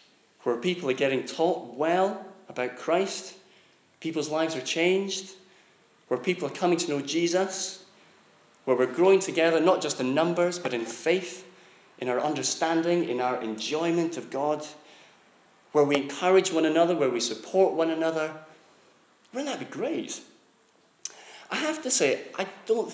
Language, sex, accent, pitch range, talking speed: English, male, British, 110-170 Hz, 150 wpm